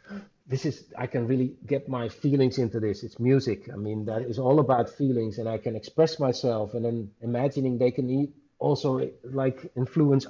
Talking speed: 190 wpm